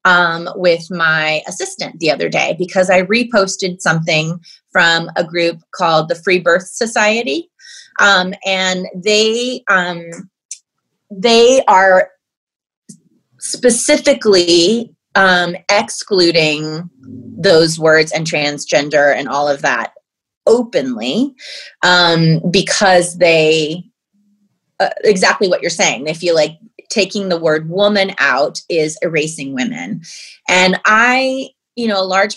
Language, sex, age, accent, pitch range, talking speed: English, female, 30-49, American, 160-205 Hz, 115 wpm